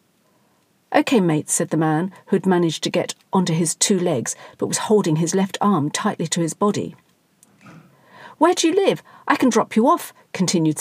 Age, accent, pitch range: 50-69, British, 165-210 Hz